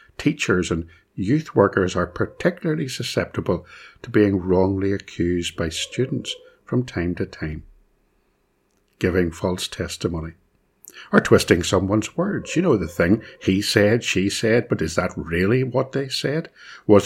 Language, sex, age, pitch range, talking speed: English, male, 60-79, 90-125 Hz, 140 wpm